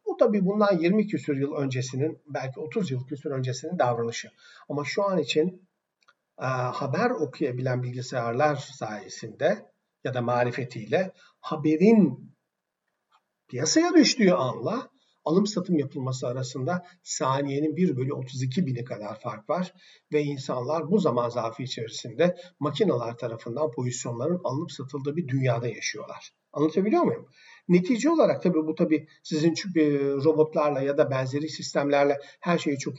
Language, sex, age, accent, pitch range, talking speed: Turkish, male, 50-69, native, 135-180 Hz, 125 wpm